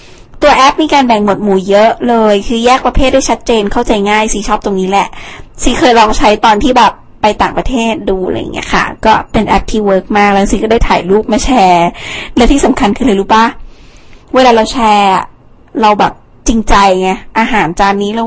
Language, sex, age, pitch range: Thai, female, 20-39, 200-240 Hz